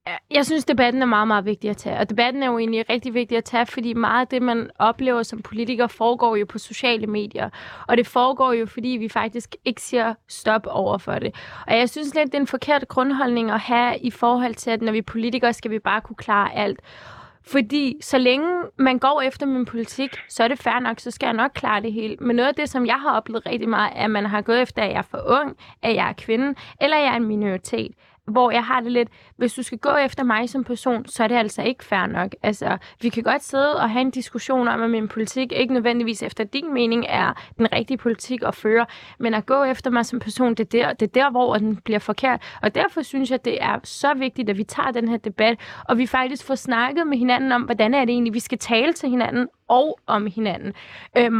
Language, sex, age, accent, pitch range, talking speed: Danish, female, 20-39, native, 225-260 Hz, 250 wpm